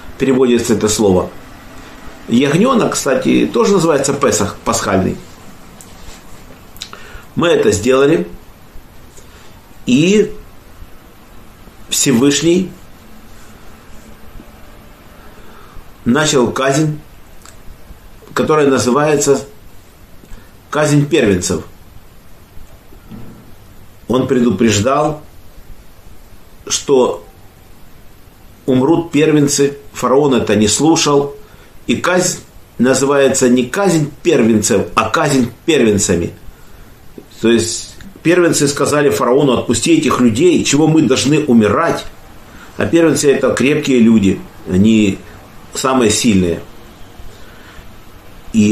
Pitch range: 100-150 Hz